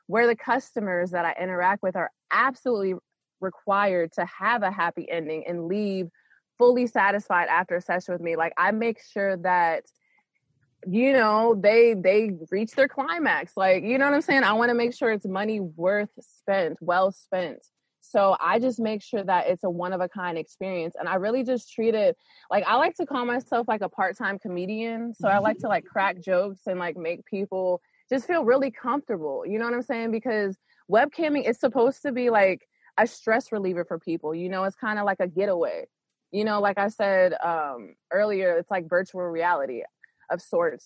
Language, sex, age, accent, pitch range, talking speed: English, female, 20-39, American, 180-230 Hz, 195 wpm